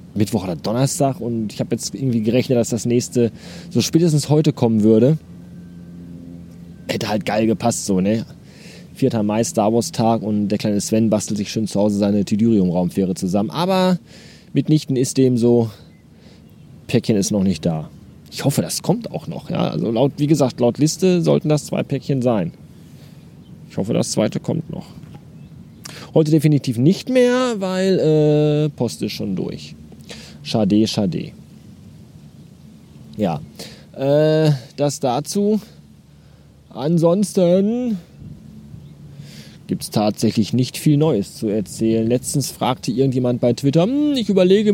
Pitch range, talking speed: 105-155 Hz, 140 wpm